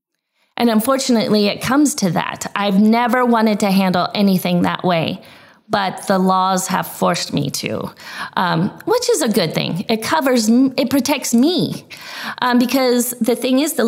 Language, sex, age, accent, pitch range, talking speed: English, female, 30-49, American, 185-235 Hz, 165 wpm